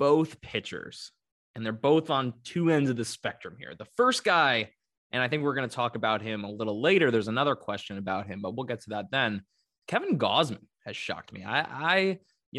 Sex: male